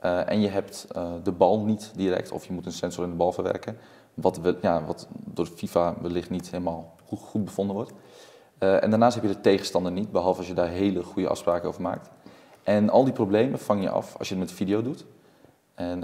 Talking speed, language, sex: 225 wpm, Dutch, male